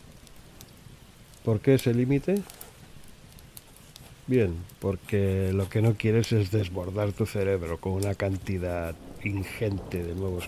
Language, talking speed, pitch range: Spanish, 115 wpm, 95-115 Hz